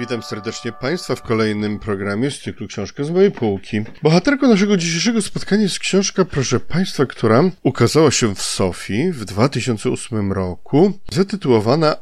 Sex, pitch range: male, 110-160 Hz